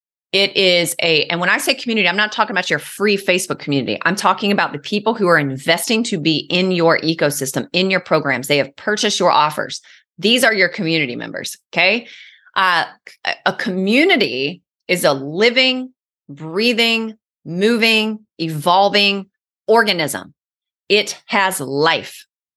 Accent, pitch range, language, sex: American, 165-215 Hz, English, female